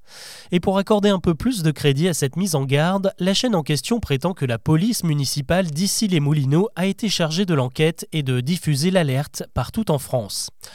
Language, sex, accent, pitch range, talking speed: French, male, French, 140-195 Hz, 205 wpm